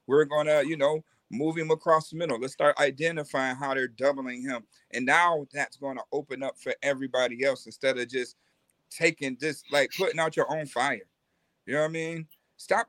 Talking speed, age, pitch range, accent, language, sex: 205 wpm, 40-59, 150-200 Hz, American, English, male